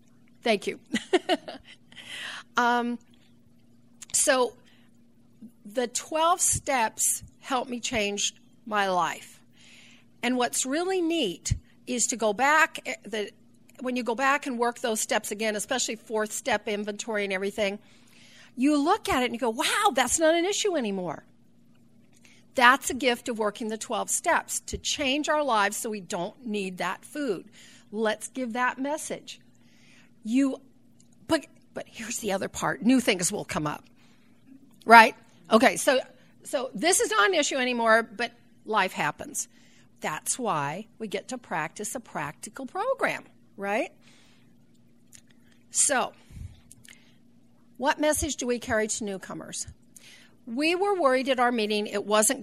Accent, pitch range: American, 210-275 Hz